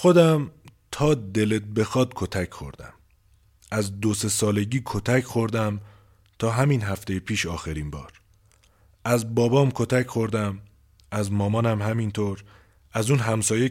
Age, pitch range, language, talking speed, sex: 30-49, 105-130 Hz, Persian, 120 wpm, male